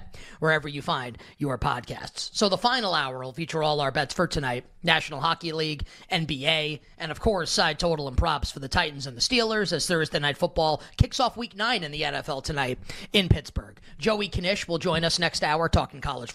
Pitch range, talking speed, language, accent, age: 150-185 Hz, 205 wpm, English, American, 30-49